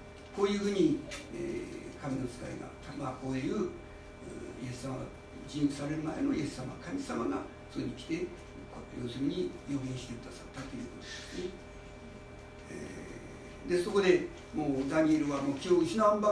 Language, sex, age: Japanese, male, 60-79